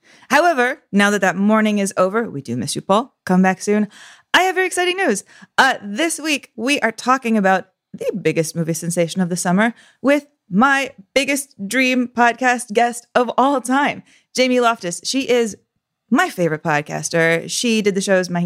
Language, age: English, 20-39